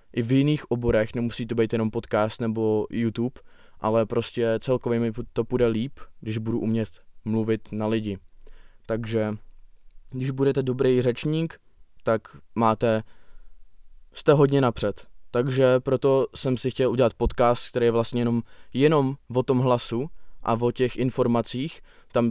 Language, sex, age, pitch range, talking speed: Czech, male, 20-39, 115-130 Hz, 145 wpm